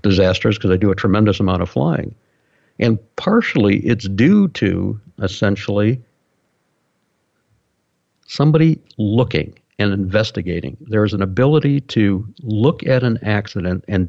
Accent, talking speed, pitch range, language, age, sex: American, 125 wpm, 100-135 Hz, English, 60-79, male